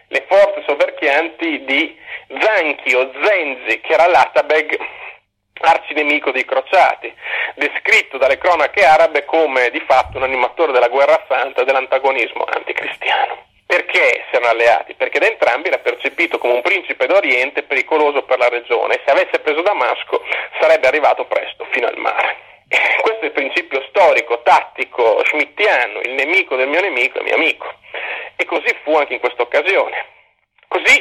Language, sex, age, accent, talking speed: Italian, male, 40-59, native, 155 wpm